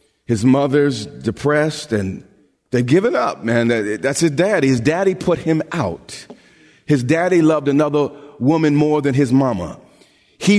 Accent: American